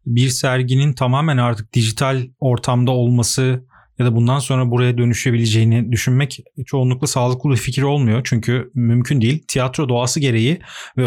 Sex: male